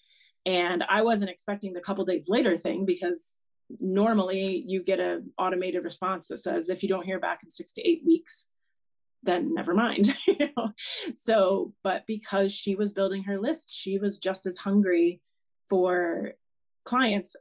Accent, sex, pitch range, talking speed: American, female, 180-230 Hz, 160 wpm